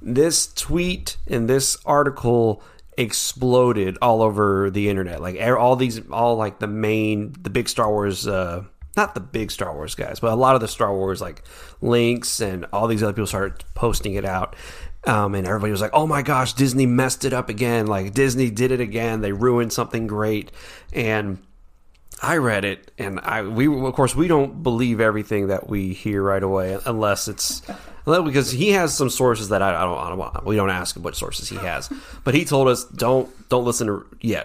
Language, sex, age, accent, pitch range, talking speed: English, male, 30-49, American, 100-125 Hz, 205 wpm